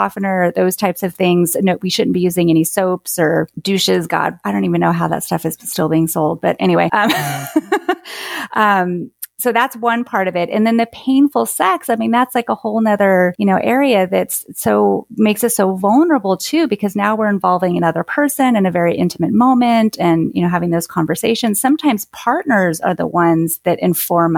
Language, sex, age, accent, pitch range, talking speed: English, female, 30-49, American, 170-230 Hz, 200 wpm